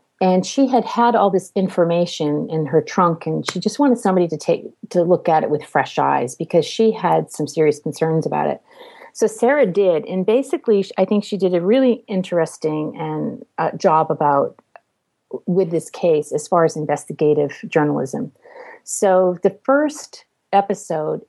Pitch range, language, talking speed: 165-220 Hz, English, 170 wpm